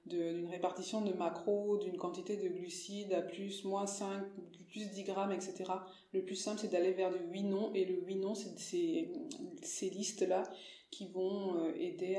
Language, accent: French, French